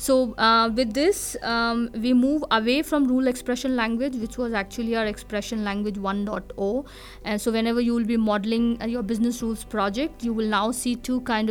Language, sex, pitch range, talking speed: English, female, 210-250 Hz, 190 wpm